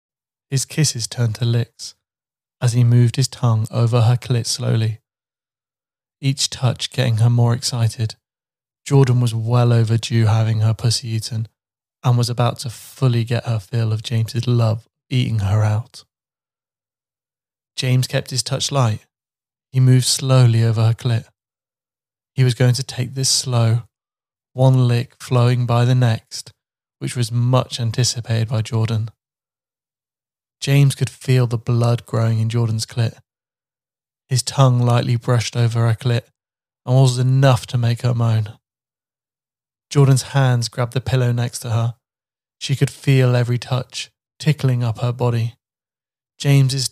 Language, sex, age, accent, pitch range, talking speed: English, male, 20-39, British, 115-130 Hz, 145 wpm